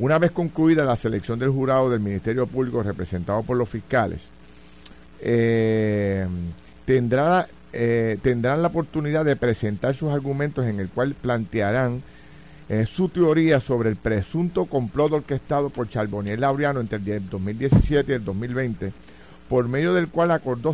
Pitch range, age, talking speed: 105-145 Hz, 50-69, 140 wpm